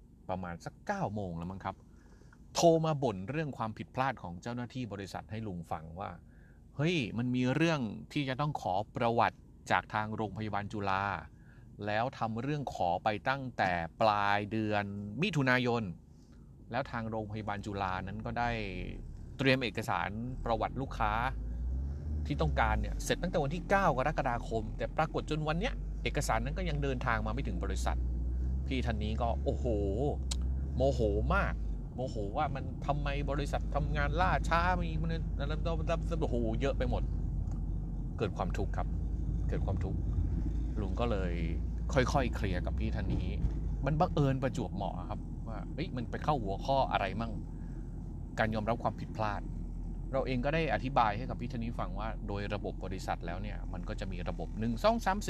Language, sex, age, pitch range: Thai, male, 30-49, 85-125 Hz